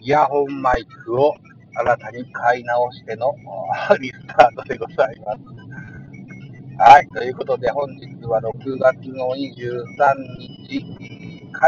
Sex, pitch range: male, 120-155 Hz